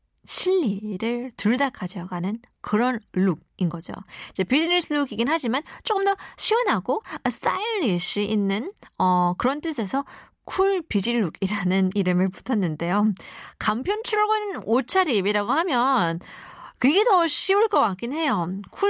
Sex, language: female, Korean